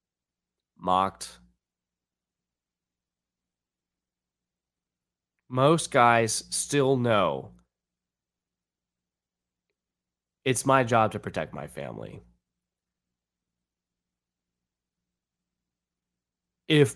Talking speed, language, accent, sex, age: 45 wpm, English, American, male, 30-49